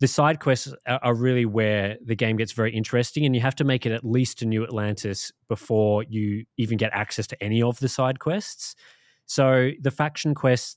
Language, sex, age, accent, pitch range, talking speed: English, male, 20-39, Australian, 110-130 Hz, 205 wpm